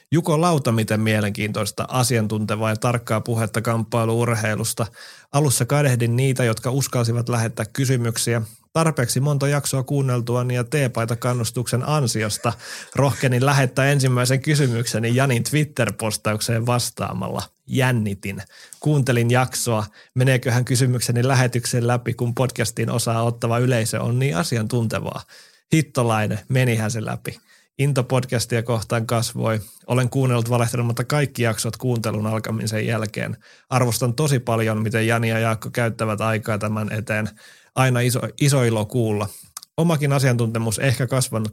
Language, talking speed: Finnish, 120 wpm